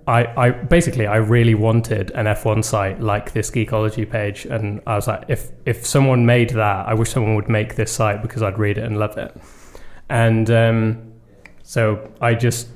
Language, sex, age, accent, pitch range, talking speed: English, male, 20-39, British, 105-120 Hz, 200 wpm